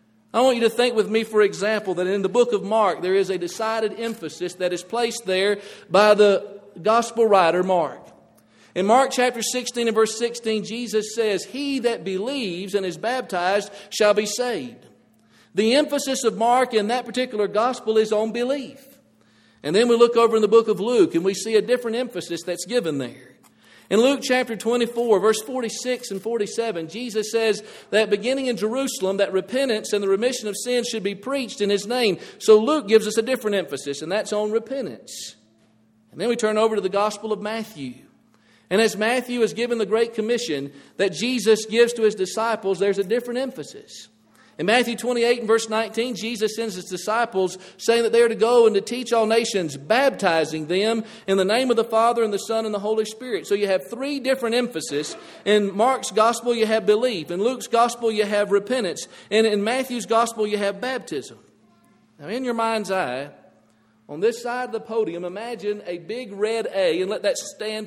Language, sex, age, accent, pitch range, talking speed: English, male, 50-69, American, 195-235 Hz, 200 wpm